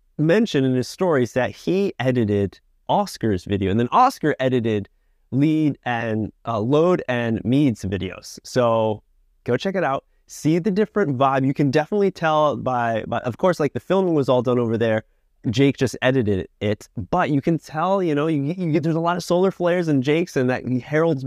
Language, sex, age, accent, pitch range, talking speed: English, male, 20-39, American, 115-160 Hz, 200 wpm